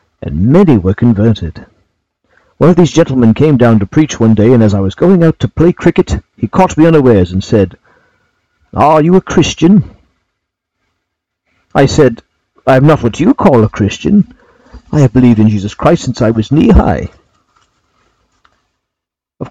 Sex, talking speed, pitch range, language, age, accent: male, 165 wpm, 100-155 Hz, English, 50-69, British